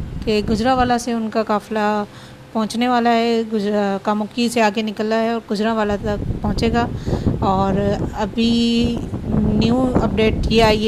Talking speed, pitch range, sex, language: 150 wpm, 210-225 Hz, female, Urdu